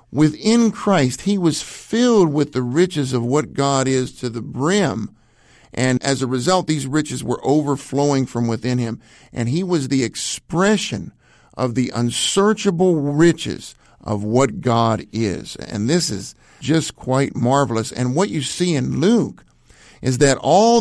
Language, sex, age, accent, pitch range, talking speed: English, male, 50-69, American, 120-155 Hz, 155 wpm